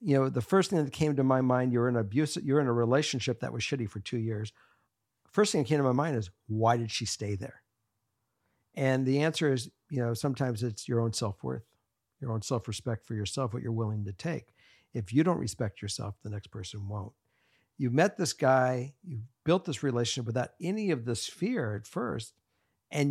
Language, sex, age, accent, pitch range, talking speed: English, male, 60-79, American, 115-145 Hz, 215 wpm